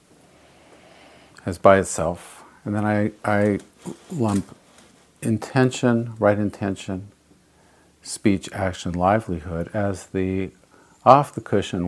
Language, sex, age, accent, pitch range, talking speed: English, male, 50-69, American, 90-110 Hz, 85 wpm